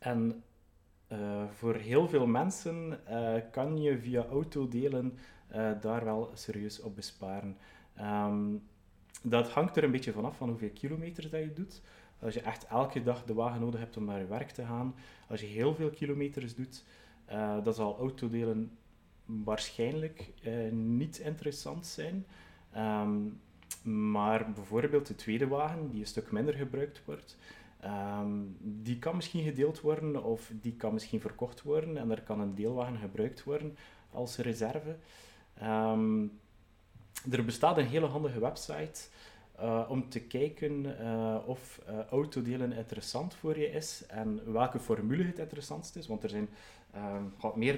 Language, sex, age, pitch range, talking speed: Dutch, male, 30-49, 110-140 Hz, 150 wpm